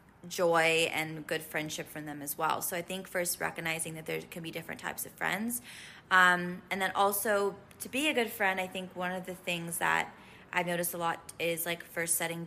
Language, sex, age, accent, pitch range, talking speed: English, female, 20-39, American, 160-185 Hz, 215 wpm